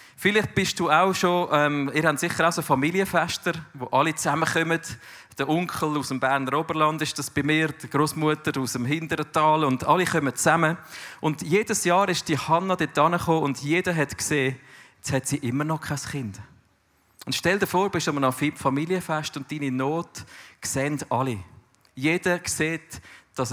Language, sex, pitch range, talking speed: English, male, 130-160 Hz, 180 wpm